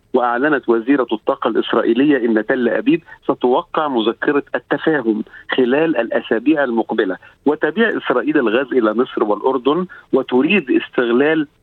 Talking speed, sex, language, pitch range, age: 110 wpm, male, Arabic, 120-160 Hz, 50-69